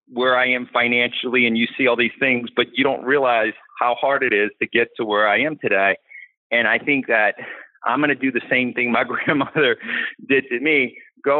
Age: 40-59